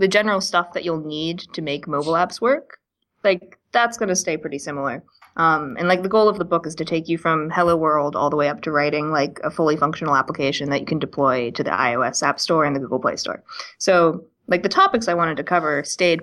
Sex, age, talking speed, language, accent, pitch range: female, 20-39, 250 wpm, English, American, 145-175 Hz